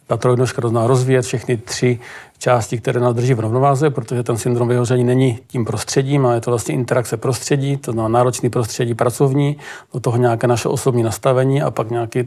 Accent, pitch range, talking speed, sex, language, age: native, 120-135 Hz, 185 wpm, male, Czech, 40-59